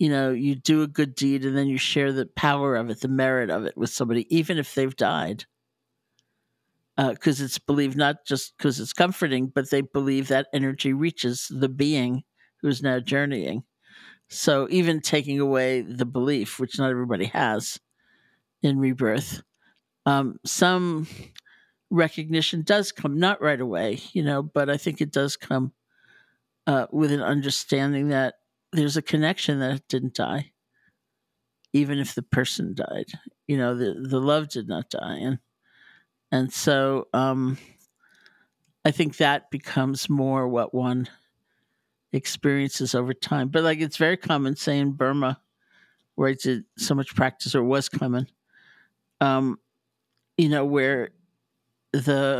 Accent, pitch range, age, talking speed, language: American, 130-150 Hz, 60-79, 155 wpm, English